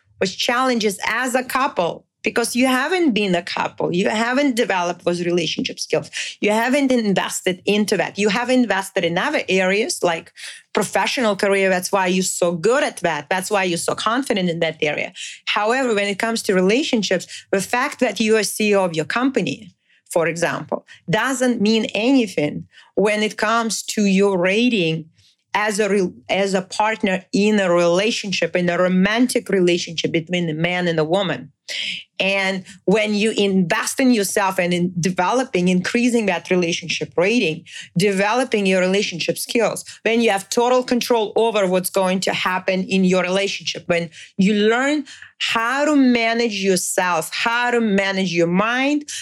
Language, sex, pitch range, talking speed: English, female, 180-235 Hz, 160 wpm